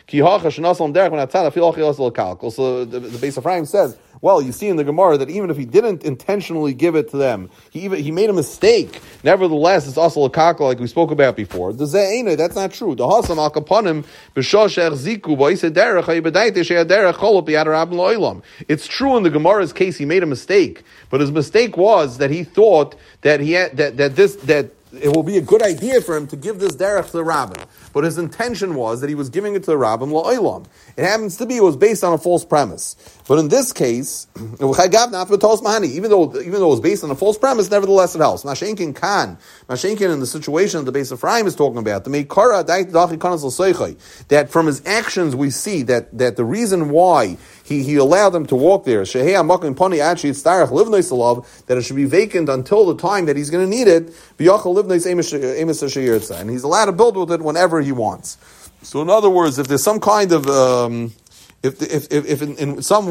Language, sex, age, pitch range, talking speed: English, male, 30-49, 140-190 Hz, 180 wpm